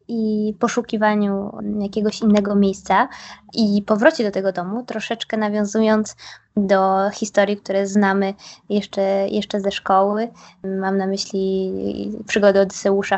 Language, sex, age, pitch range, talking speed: Polish, female, 20-39, 195-220 Hz, 115 wpm